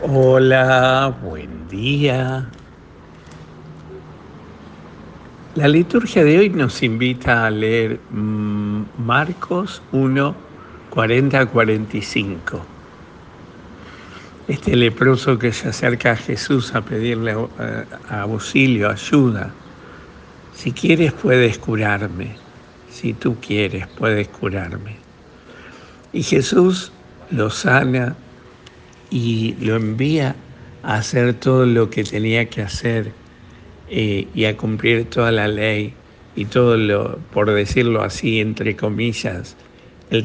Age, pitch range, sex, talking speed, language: 70-89, 105-125 Hz, male, 100 wpm, Spanish